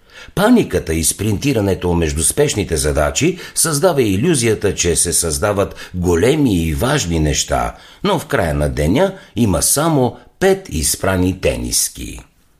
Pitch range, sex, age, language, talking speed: 80-115 Hz, male, 60-79, Bulgarian, 120 wpm